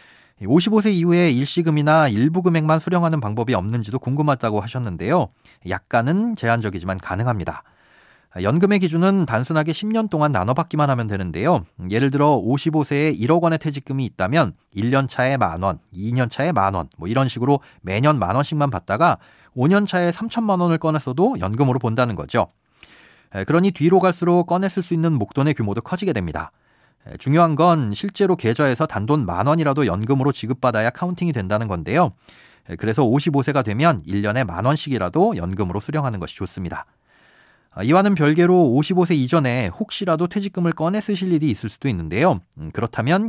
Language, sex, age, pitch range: Korean, male, 40-59, 110-170 Hz